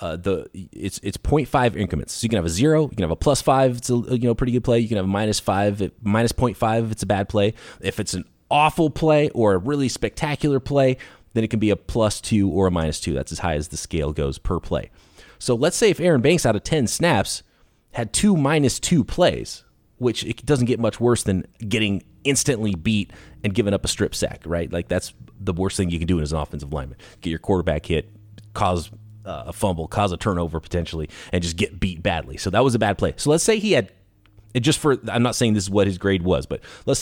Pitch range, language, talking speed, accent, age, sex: 95-130 Hz, English, 250 wpm, American, 30-49, male